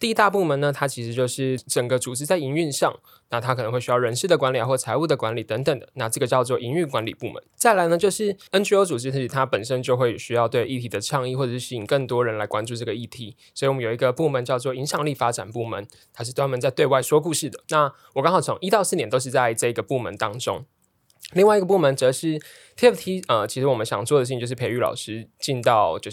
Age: 20-39